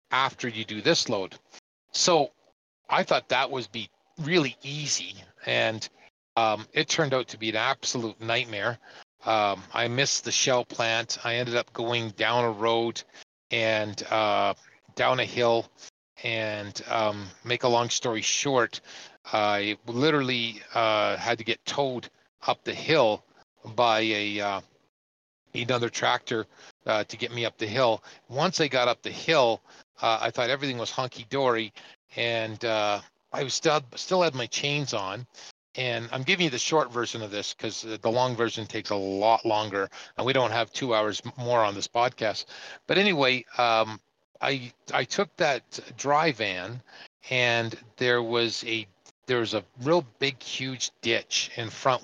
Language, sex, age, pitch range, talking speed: English, male, 40-59, 110-130 Hz, 165 wpm